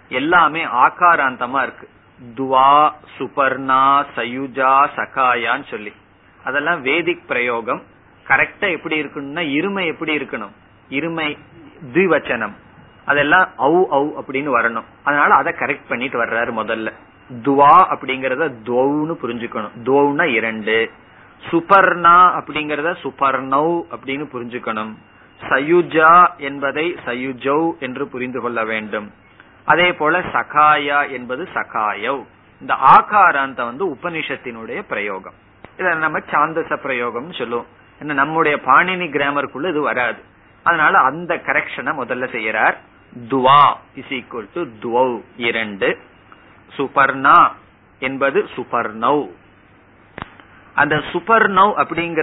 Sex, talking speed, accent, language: male, 70 wpm, native, Tamil